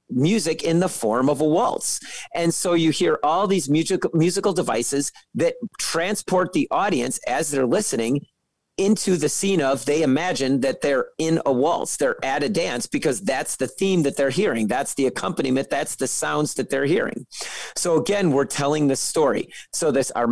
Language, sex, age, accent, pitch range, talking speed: English, male, 40-59, American, 135-180 Hz, 185 wpm